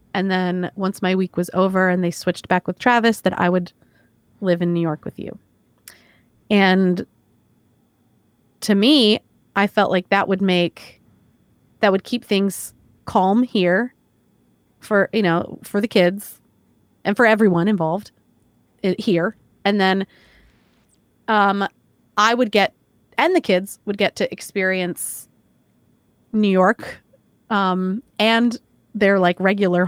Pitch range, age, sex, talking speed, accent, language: 180-220 Hz, 30-49, female, 135 wpm, American, English